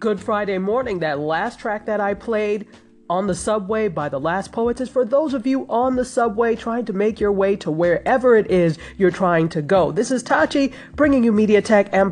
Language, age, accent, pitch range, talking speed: English, 30-49, American, 190-255 Hz, 225 wpm